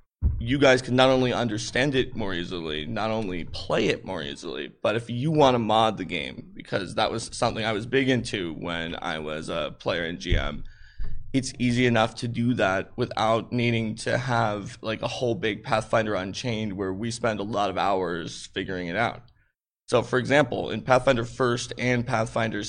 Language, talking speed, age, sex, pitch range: English, 190 wpm, 20-39, male, 105-125 Hz